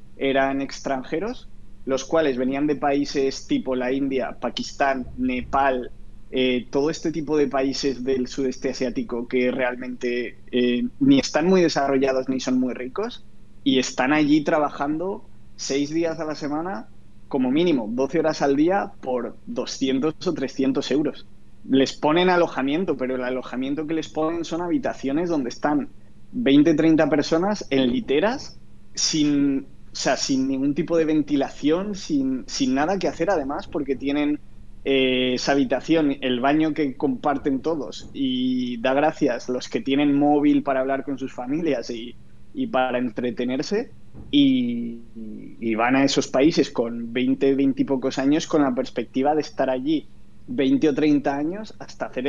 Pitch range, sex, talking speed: 130-155 Hz, male, 155 wpm